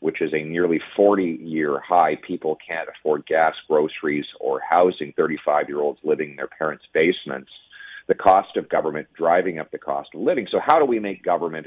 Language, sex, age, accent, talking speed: English, male, 40-59, American, 180 wpm